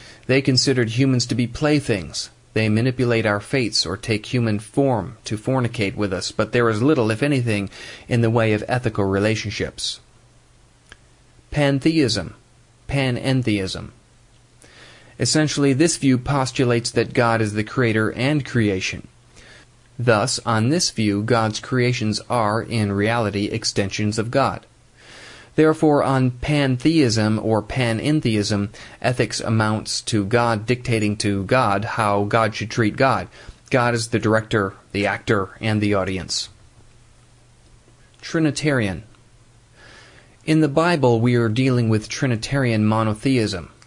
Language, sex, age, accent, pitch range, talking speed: English, male, 30-49, American, 105-125 Hz, 125 wpm